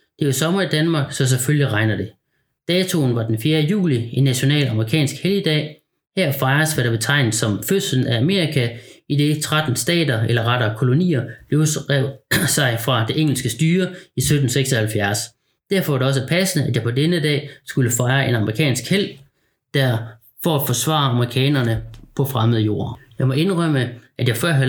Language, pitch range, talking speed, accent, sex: Danish, 120-150 Hz, 175 wpm, native, male